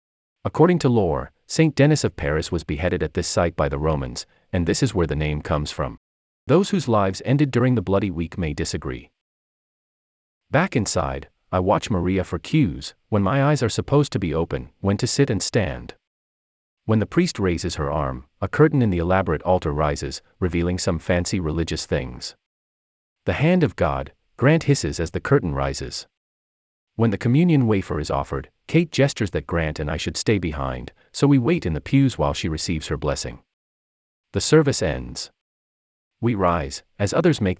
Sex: male